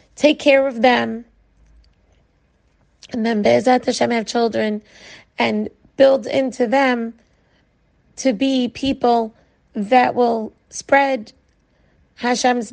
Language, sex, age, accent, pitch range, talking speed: English, female, 30-49, American, 235-265 Hz, 100 wpm